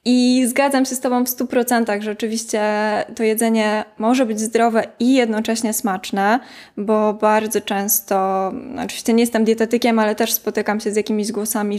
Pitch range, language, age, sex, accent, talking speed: 215-255 Hz, Polish, 20-39, female, native, 165 wpm